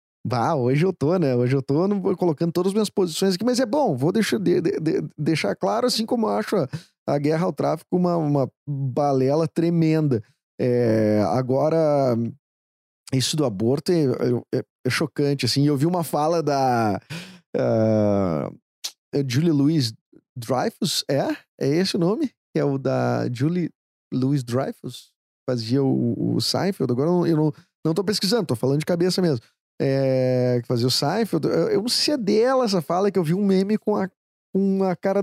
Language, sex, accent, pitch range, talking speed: Portuguese, male, Brazilian, 130-175 Hz, 180 wpm